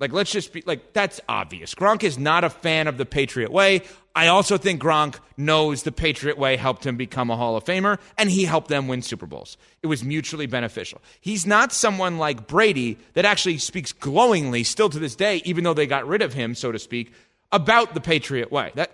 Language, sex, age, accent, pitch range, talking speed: English, male, 30-49, American, 135-195 Hz, 220 wpm